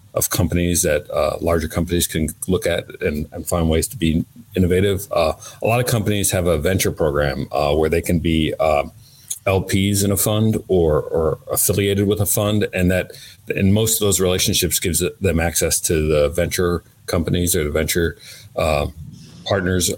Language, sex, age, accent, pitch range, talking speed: English, male, 40-59, American, 80-95 Hz, 180 wpm